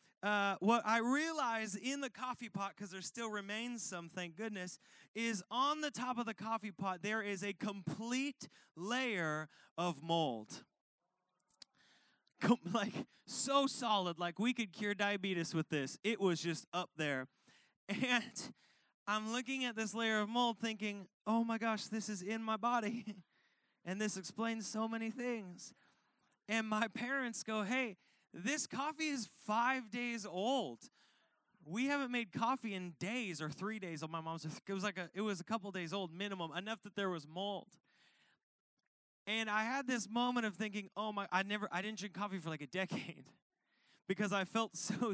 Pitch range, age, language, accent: 185-235 Hz, 20-39, English, American